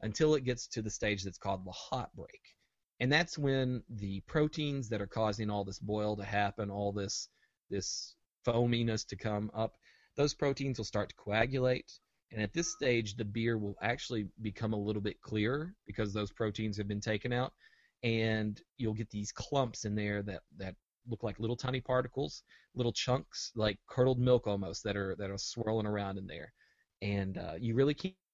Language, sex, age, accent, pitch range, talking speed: English, male, 30-49, American, 105-125 Hz, 190 wpm